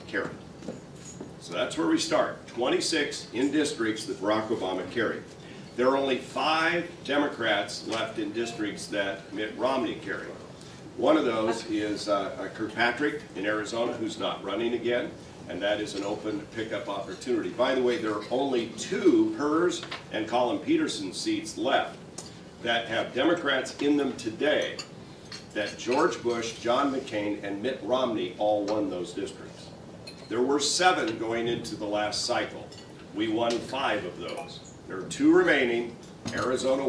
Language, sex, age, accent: English, male, 50-69, American